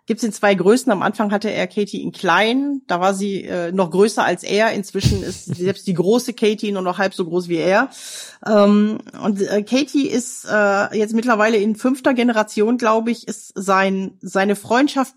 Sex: female